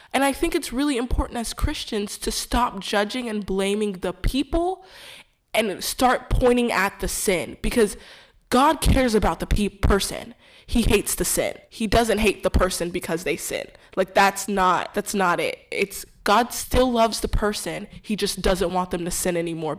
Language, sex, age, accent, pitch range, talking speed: English, female, 20-39, American, 185-240 Hz, 180 wpm